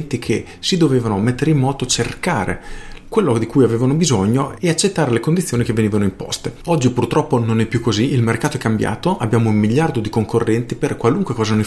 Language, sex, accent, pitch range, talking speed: Italian, male, native, 100-125 Hz, 195 wpm